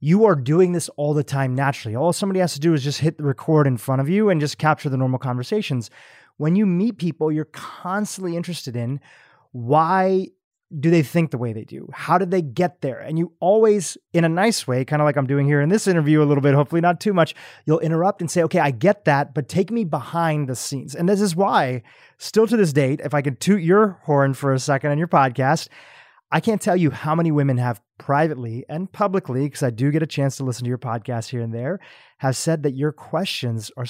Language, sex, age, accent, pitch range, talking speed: English, male, 30-49, American, 135-180 Hz, 245 wpm